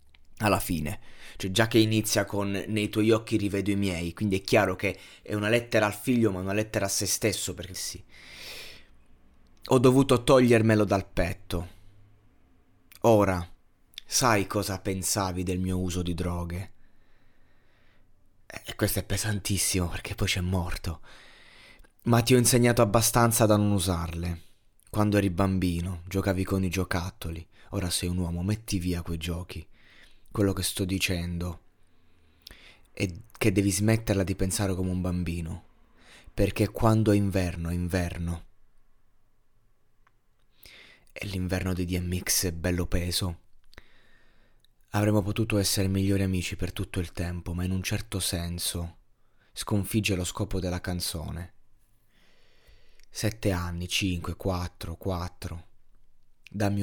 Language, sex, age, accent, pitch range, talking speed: Italian, male, 20-39, native, 90-105 Hz, 135 wpm